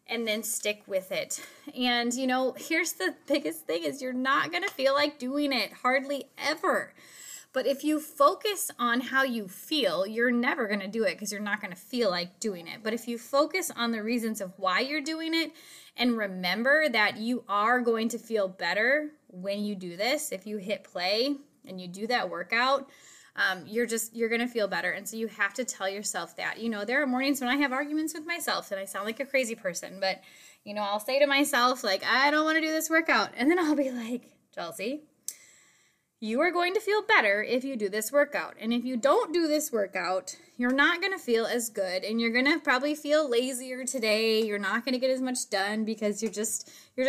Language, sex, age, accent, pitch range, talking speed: English, female, 20-39, American, 215-285 Hz, 230 wpm